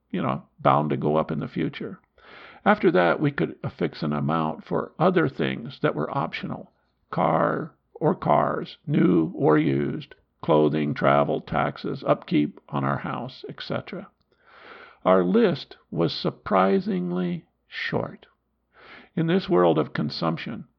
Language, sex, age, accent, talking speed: English, male, 50-69, American, 135 wpm